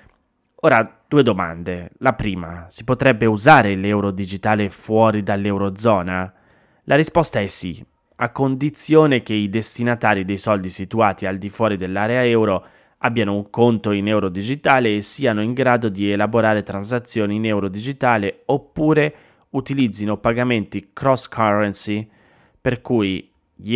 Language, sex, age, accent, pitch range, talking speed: Italian, male, 20-39, native, 95-120 Hz, 135 wpm